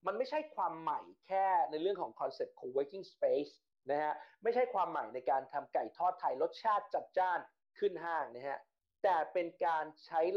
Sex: male